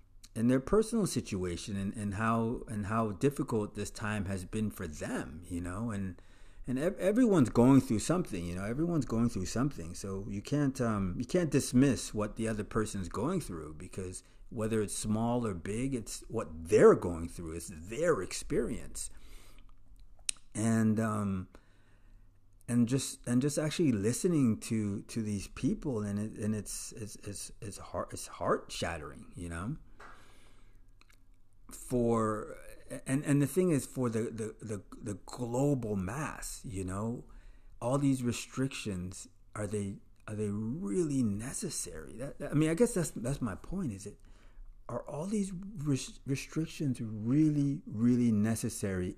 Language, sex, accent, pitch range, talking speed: English, male, American, 95-120 Hz, 155 wpm